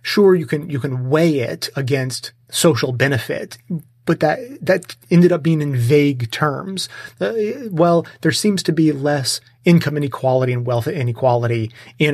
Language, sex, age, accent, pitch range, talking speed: English, male, 30-49, American, 125-155 Hz, 160 wpm